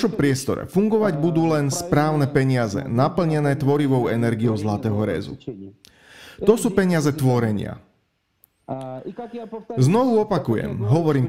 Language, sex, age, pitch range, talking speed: Slovak, male, 40-59, 125-190 Hz, 105 wpm